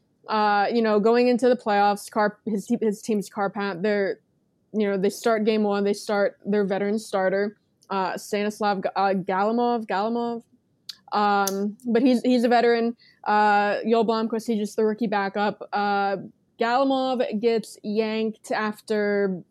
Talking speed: 140 wpm